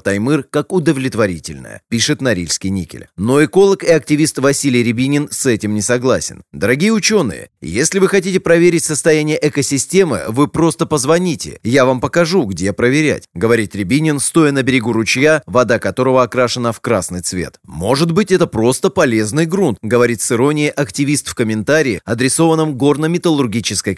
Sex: male